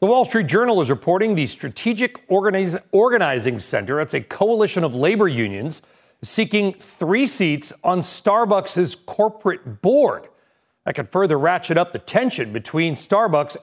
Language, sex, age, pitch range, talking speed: English, male, 40-59, 155-210 Hz, 145 wpm